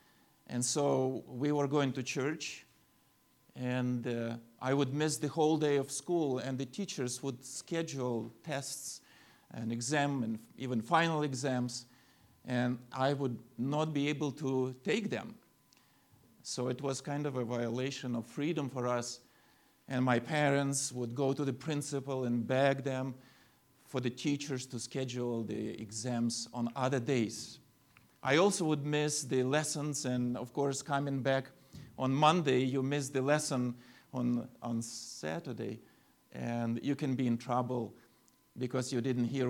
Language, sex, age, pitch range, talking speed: English, male, 40-59, 120-145 Hz, 150 wpm